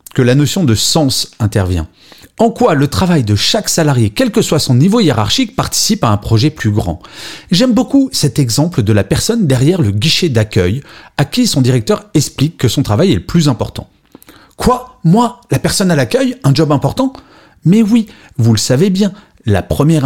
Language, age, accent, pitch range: French, 40-59, French, 110-180 Hz